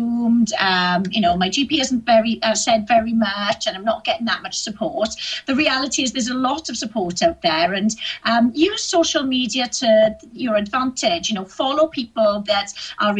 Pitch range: 205-270 Hz